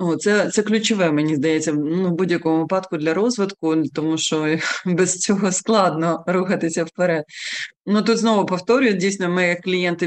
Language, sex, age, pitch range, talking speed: Ukrainian, female, 20-39, 160-185 Hz, 150 wpm